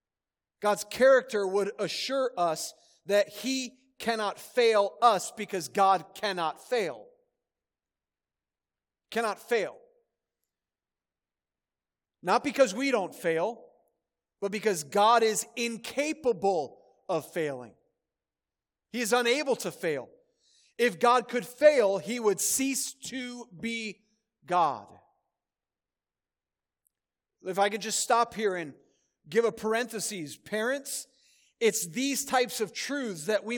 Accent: American